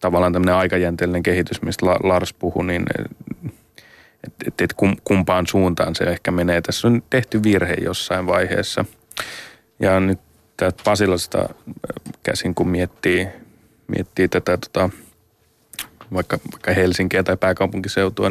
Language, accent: Finnish, native